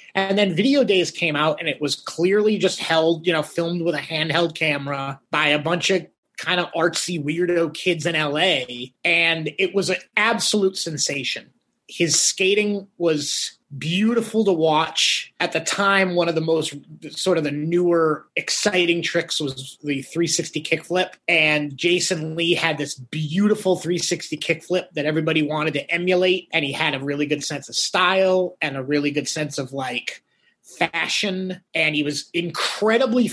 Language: English